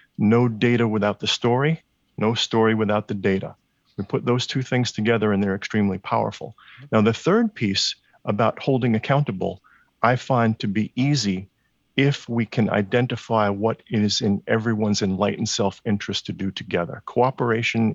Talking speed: 155 wpm